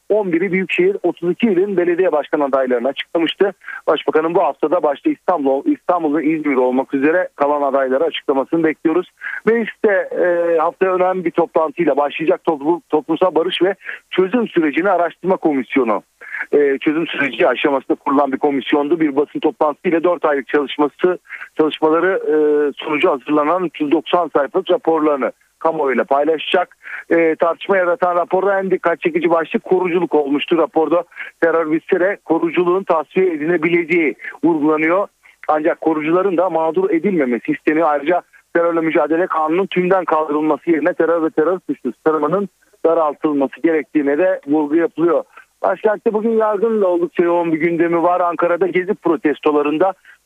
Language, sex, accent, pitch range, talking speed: Turkish, male, native, 155-190 Hz, 130 wpm